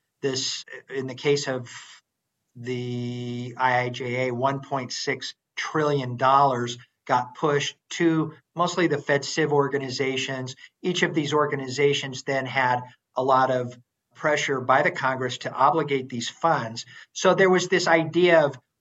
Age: 50-69